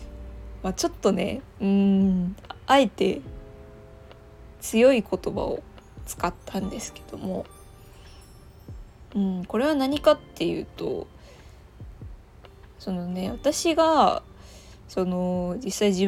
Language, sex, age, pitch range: Japanese, female, 20-39, 195-240 Hz